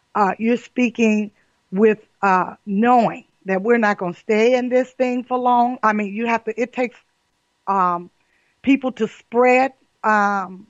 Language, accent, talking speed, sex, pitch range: English, American, 165 wpm, female, 190-230 Hz